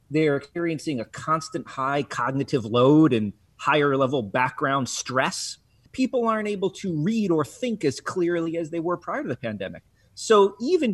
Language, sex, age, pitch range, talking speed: English, male, 30-49, 130-180 Hz, 165 wpm